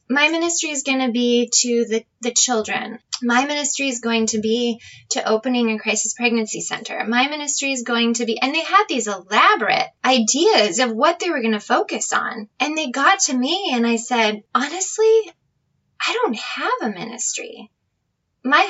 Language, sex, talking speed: English, female, 185 wpm